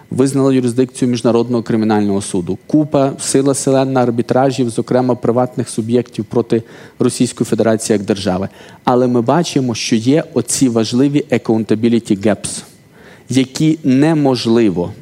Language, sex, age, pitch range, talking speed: Ukrainian, male, 40-59, 110-130 Hz, 110 wpm